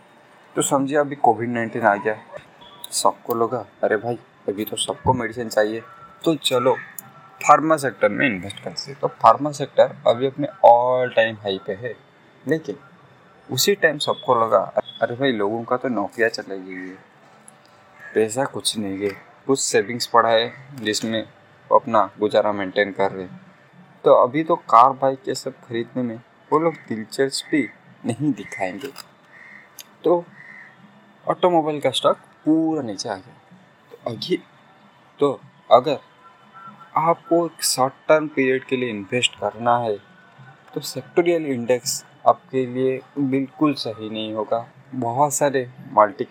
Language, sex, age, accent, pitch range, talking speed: Hindi, male, 20-39, native, 115-155 Hz, 145 wpm